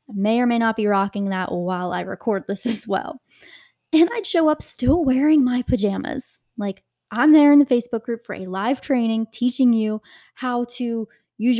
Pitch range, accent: 205-255 Hz, American